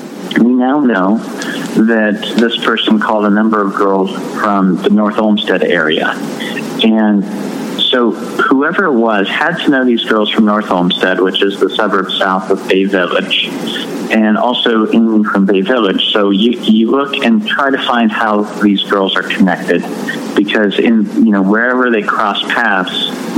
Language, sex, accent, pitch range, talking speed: English, male, American, 95-115 Hz, 165 wpm